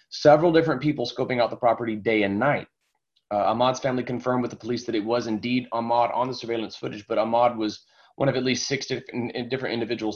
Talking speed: 215 wpm